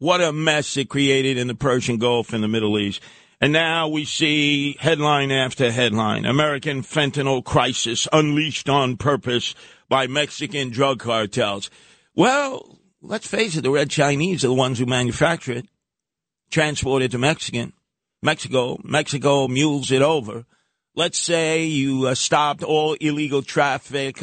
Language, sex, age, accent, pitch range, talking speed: English, male, 50-69, American, 135-200 Hz, 150 wpm